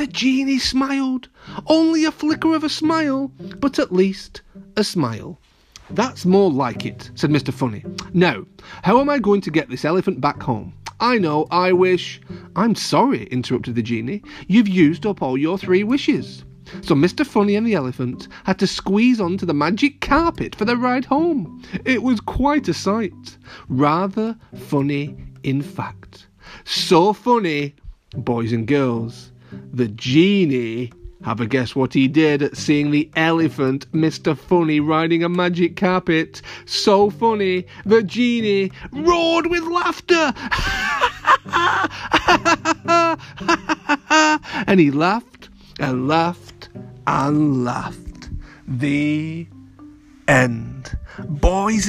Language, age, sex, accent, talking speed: English, 40-59, male, British, 130 wpm